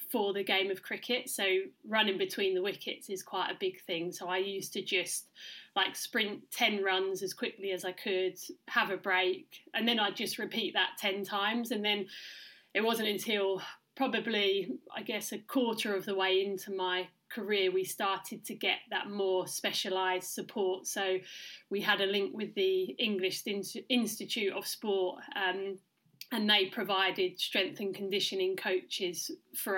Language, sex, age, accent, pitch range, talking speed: English, female, 30-49, British, 185-220 Hz, 170 wpm